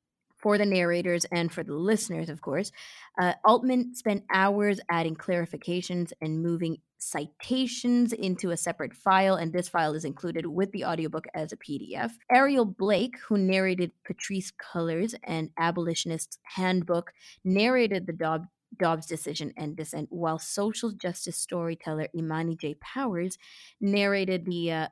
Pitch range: 165-205 Hz